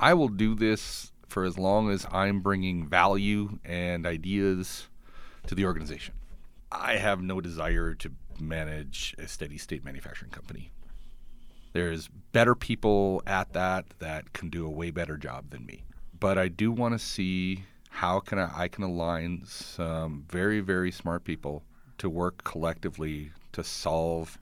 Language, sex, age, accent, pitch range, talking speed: English, male, 40-59, American, 80-100 Hz, 150 wpm